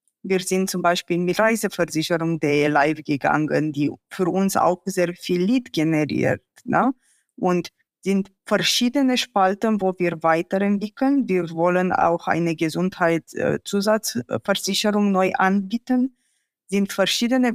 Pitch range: 175-220 Hz